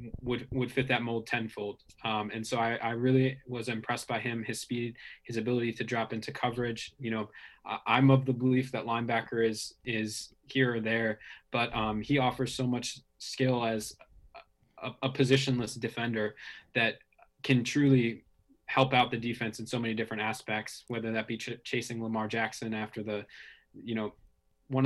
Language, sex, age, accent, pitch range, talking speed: English, male, 20-39, American, 110-125 Hz, 175 wpm